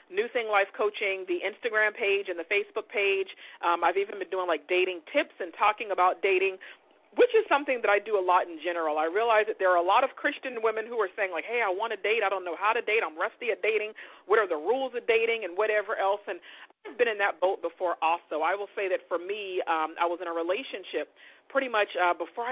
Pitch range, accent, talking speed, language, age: 175-230 Hz, American, 255 wpm, English, 40-59